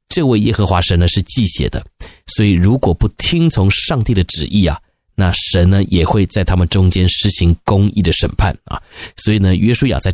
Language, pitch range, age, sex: Chinese, 90-120 Hz, 30-49, male